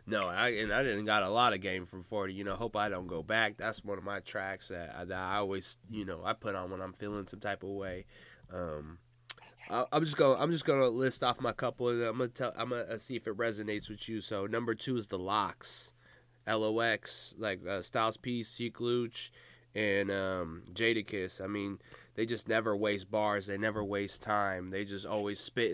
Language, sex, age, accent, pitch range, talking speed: English, male, 20-39, American, 105-120 Hz, 230 wpm